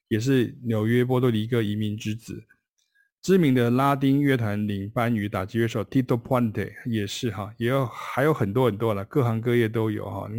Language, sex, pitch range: Chinese, male, 105-130 Hz